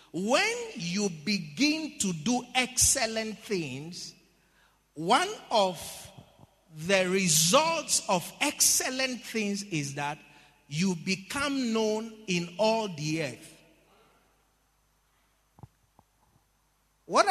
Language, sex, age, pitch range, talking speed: English, male, 40-59, 170-230 Hz, 85 wpm